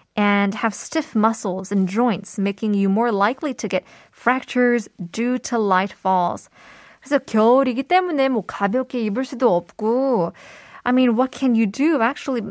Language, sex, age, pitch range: Korean, female, 20-39, 200-255 Hz